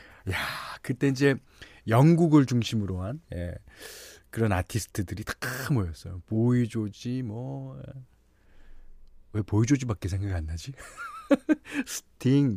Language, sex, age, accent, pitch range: Korean, male, 40-59, native, 100-150 Hz